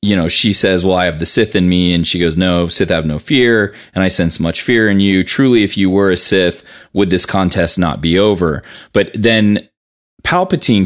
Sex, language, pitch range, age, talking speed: male, English, 85-100 Hz, 20-39, 230 wpm